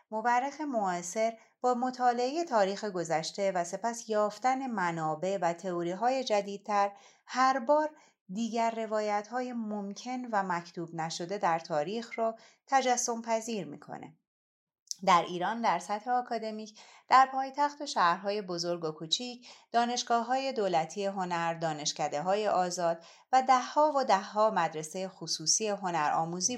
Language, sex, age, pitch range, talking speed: Persian, female, 30-49, 175-245 Hz, 120 wpm